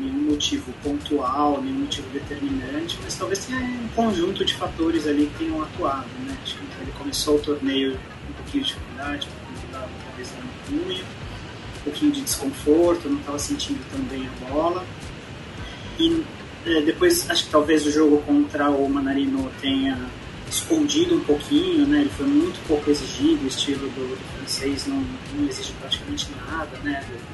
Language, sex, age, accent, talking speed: Portuguese, male, 20-39, Brazilian, 160 wpm